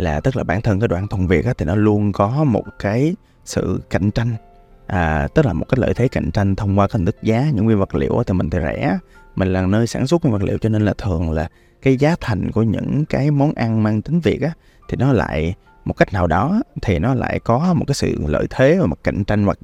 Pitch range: 90-120 Hz